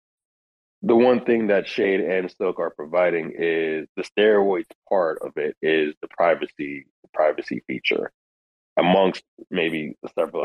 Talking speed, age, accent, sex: 140 wpm, 30-49, American, male